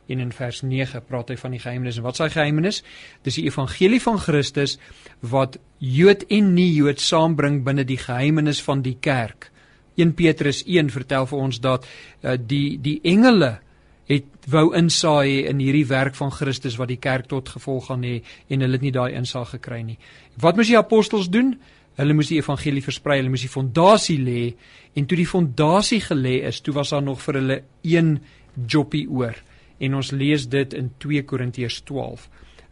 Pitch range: 130-155 Hz